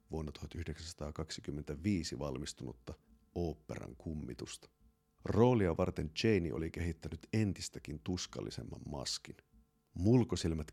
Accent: native